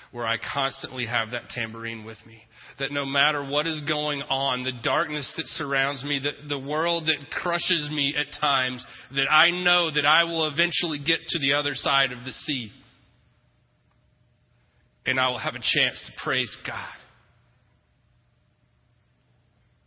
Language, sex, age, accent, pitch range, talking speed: English, male, 30-49, American, 120-150 Hz, 155 wpm